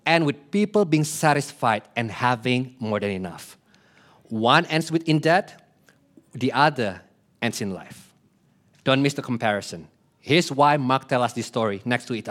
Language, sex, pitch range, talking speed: English, male, 125-175 Hz, 160 wpm